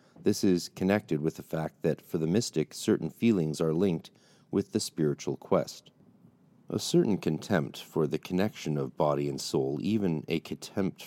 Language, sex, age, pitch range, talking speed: English, male, 40-59, 70-90 Hz, 170 wpm